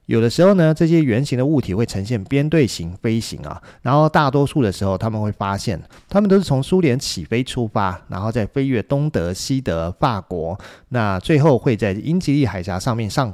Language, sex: Chinese, male